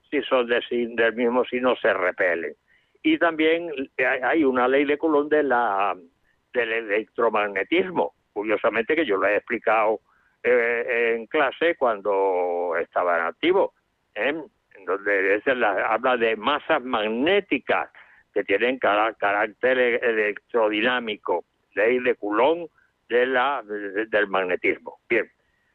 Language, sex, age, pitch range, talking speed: Spanish, male, 60-79, 125-185 Hz, 135 wpm